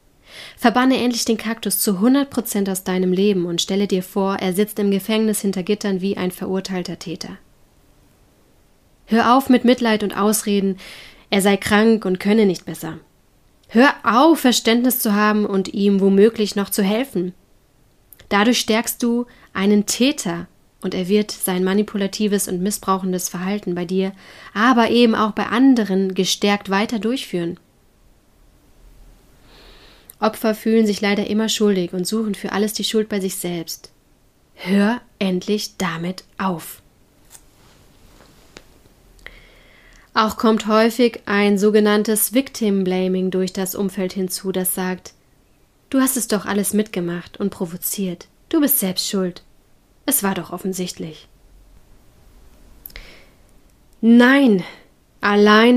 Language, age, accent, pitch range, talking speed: German, 30-49, German, 190-220 Hz, 130 wpm